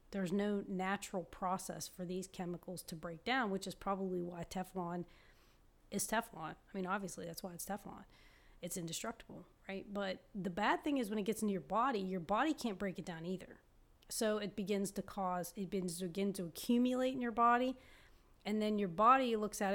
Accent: American